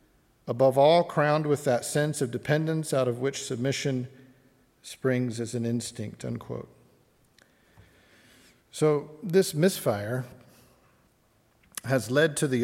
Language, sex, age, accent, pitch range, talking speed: English, male, 50-69, American, 120-150 Hz, 110 wpm